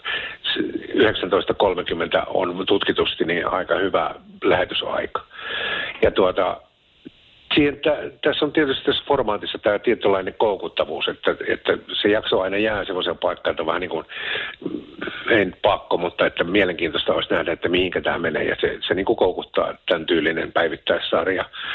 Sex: male